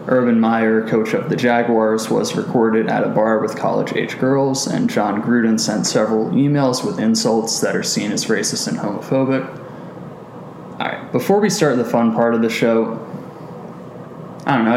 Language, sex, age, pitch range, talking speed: English, male, 20-39, 110-145 Hz, 175 wpm